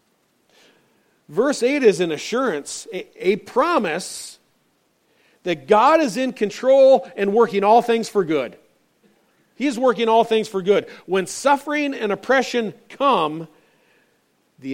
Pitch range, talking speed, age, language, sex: 130-215 Hz, 120 wpm, 40-59, English, male